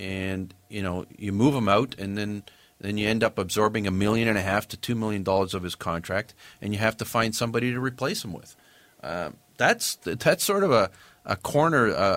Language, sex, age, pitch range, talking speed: English, male, 40-59, 100-120 Hz, 220 wpm